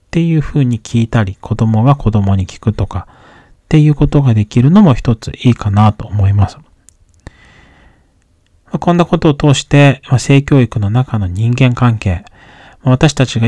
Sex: male